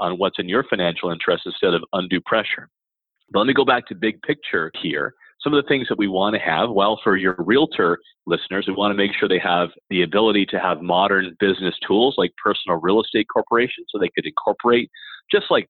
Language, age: English, 40-59